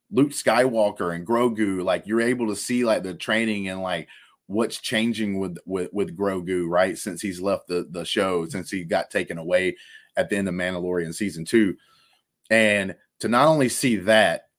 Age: 30-49